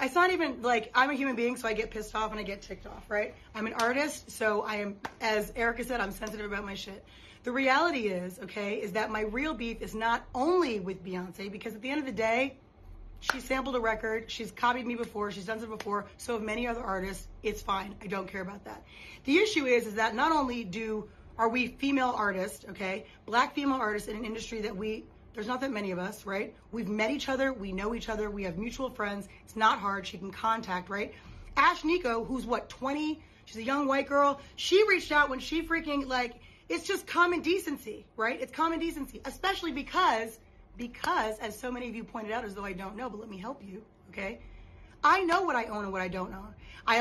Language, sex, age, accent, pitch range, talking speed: English, female, 30-49, American, 210-265 Hz, 235 wpm